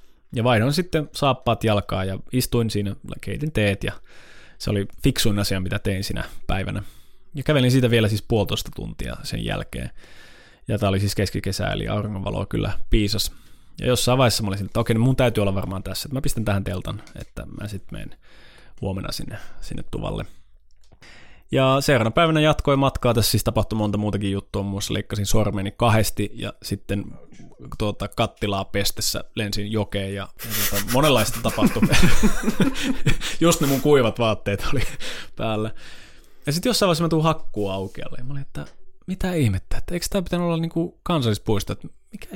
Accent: native